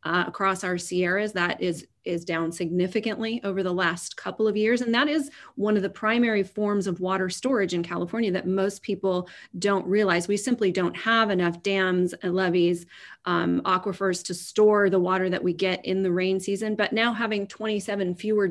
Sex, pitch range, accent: female, 180-200 Hz, American